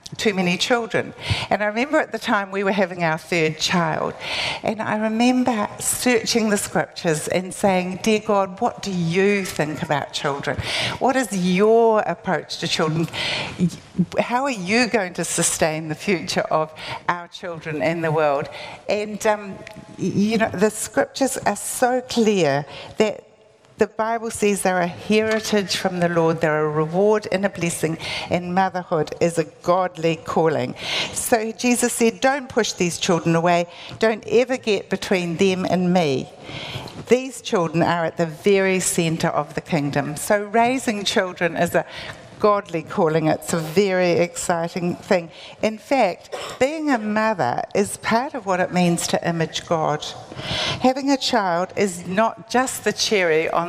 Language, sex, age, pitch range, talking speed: English, female, 60-79, 170-220 Hz, 160 wpm